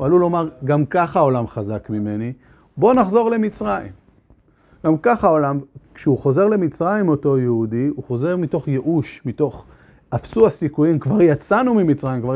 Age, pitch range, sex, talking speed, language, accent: 40-59, 125-165 Hz, male, 145 wpm, Hebrew, native